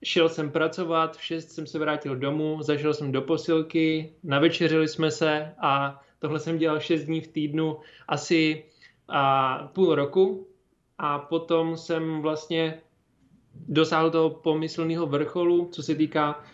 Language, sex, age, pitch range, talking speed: Czech, male, 20-39, 145-165 Hz, 140 wpm